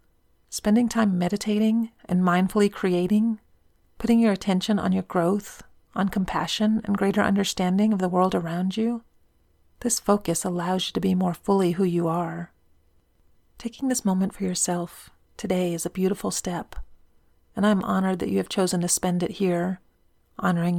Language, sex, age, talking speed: English, female, 40-59, 160 wpm